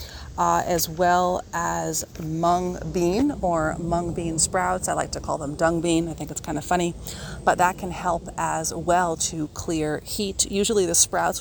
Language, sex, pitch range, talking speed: English, female, 150-175 Hz, 185 wpm